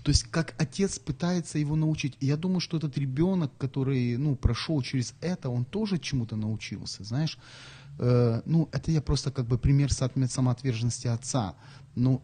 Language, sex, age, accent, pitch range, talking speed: Ukrainian, male, 30-49, native, 120-150 Hz, 165 wpm